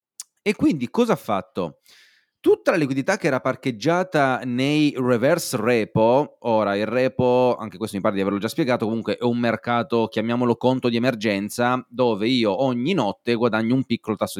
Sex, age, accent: male, 30-49, native